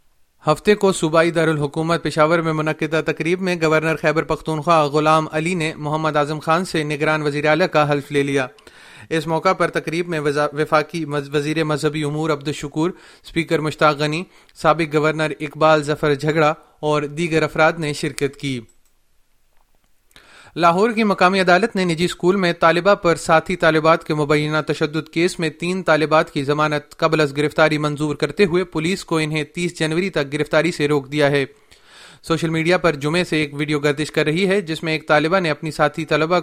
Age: 30-49